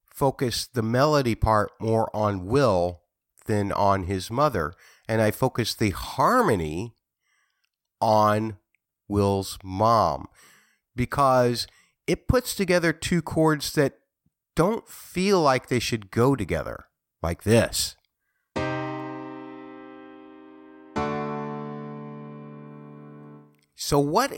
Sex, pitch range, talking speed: male, 95-140 Hz, 90 wpm